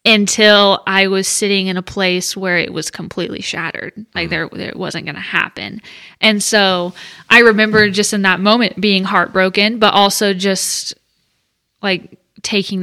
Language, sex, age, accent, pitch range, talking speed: English, female, 20-39, American, 185-215 Hz, 160 wpm